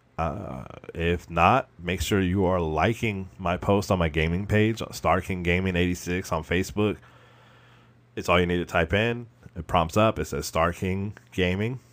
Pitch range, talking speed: 85-110 Hz, 180 wpm